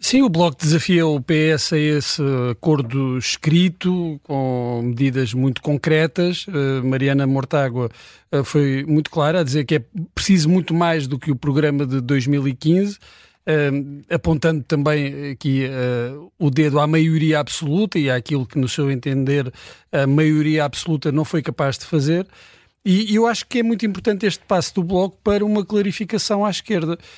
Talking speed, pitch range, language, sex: 155 wpm, 140-180 Hz, Portuguese, male